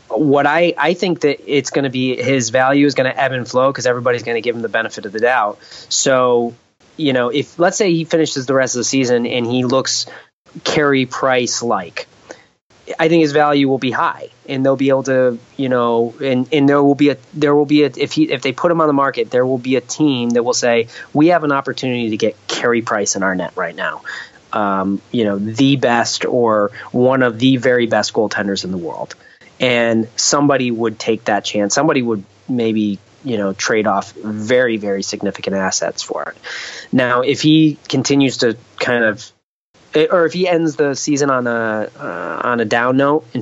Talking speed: 215 wpm